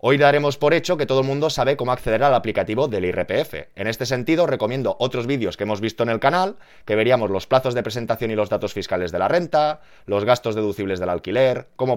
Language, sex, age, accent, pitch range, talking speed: Spanish, male, 20-39, Spanish, 110-150 Hz, 230 wpm